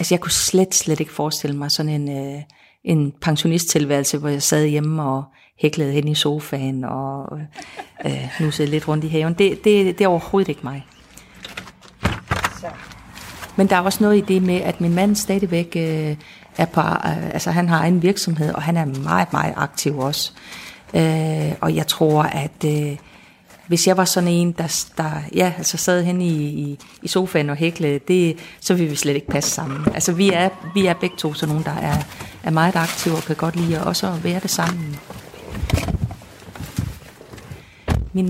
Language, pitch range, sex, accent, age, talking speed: Danish, 145-180 Hz, female, native, 40-59, 185 wpm